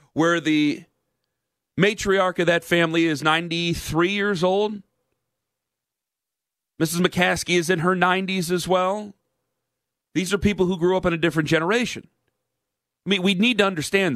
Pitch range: 150-190 Hz